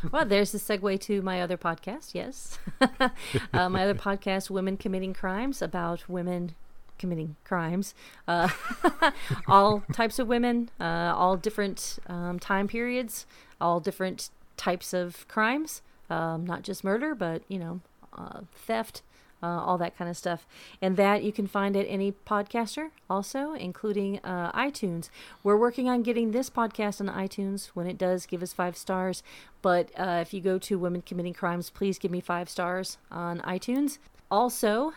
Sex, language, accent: female, English, American